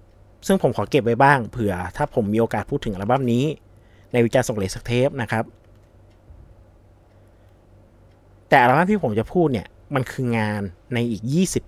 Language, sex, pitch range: Thai, male, 100-130 Hz